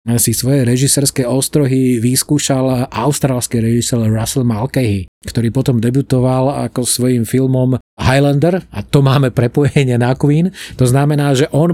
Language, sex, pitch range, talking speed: Slovak, male, 120-140 Hz, 135 wpm